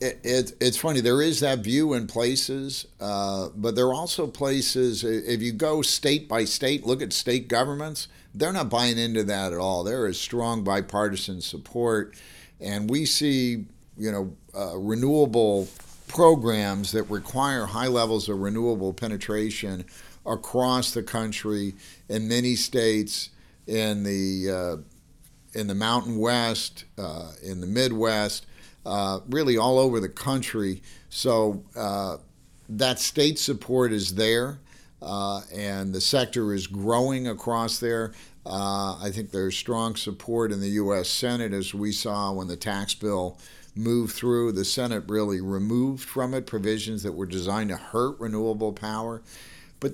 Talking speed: 150 wpm